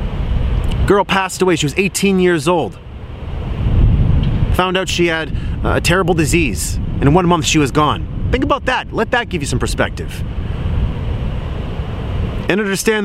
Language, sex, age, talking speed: English, male, 30-49, 150 wpm